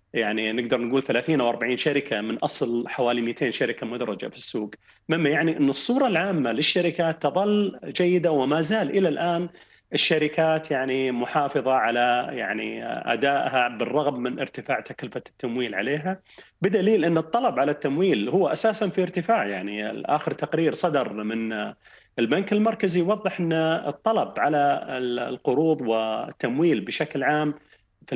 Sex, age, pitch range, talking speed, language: male, 30-49, 130-180 Hz, 135 wpm, Arabic